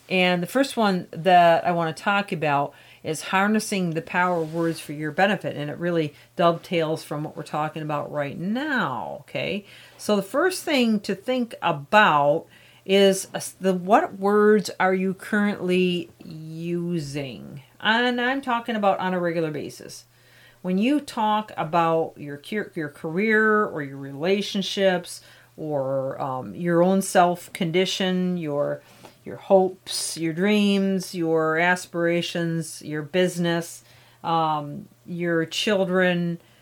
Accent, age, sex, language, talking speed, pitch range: American, 40-59, female, English, 135 wpm, 150-190 Hz